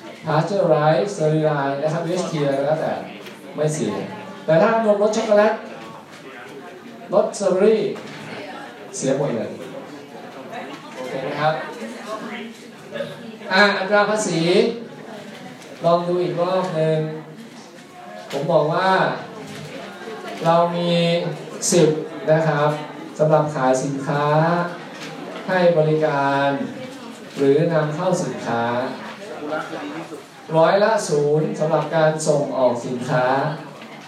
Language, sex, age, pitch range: Thai, male, 20-39, 150-190 Hz